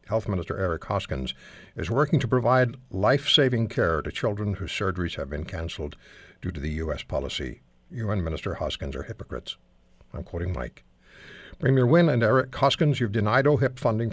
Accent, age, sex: American, 60-79, male